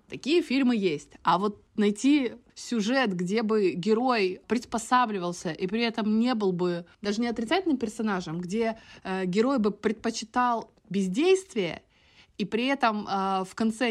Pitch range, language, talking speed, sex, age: 190-245 Hz, Russian, 140 wpm, female, 20-39